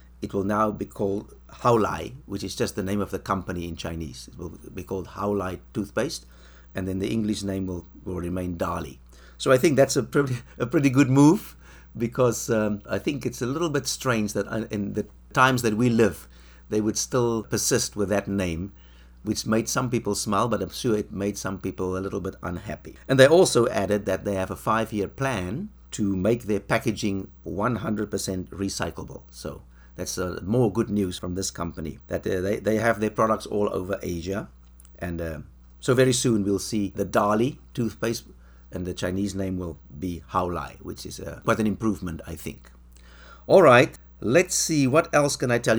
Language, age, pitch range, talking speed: English, 60-79, 85-115 Hz, 200 wpm